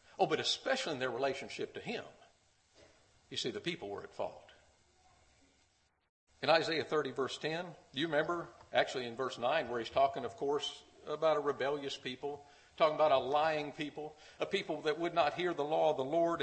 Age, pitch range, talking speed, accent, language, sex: 50-69, 115-190 Hz, 185 wpm, American, English, male